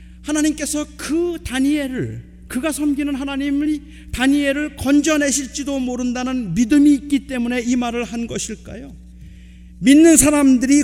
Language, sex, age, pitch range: Korean, male, 40-59, 240-300 Hz